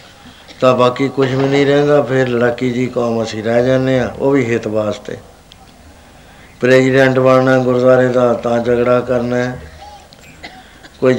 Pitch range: 115-135 Hz